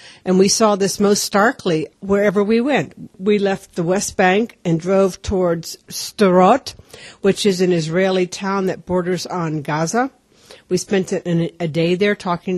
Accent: American